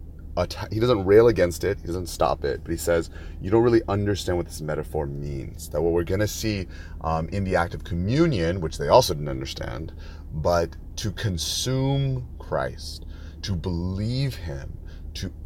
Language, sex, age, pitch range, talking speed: English, male, 30-49, 80-90 Hz, 180 wpm